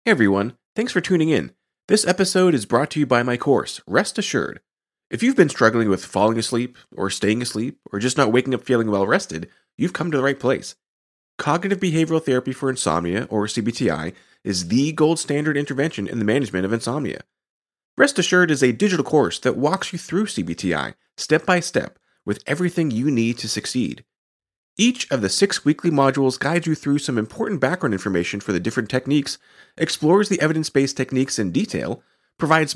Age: 30-49